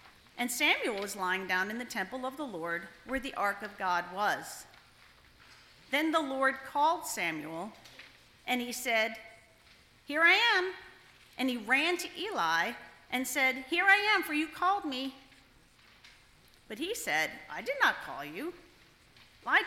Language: English